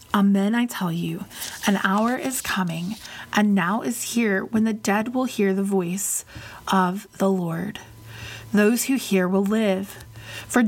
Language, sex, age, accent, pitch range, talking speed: English, female, 30-49, American, 185-225 Hz, 155 wpm